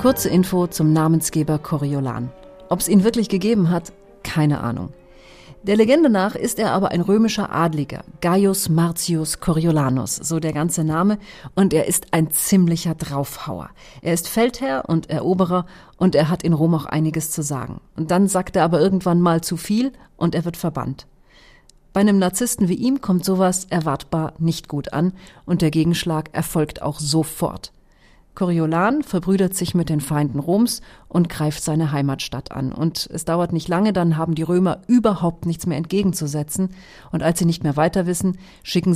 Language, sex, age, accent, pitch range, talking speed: German, female, 40-59, German, 155-185 Hz, 170 wpm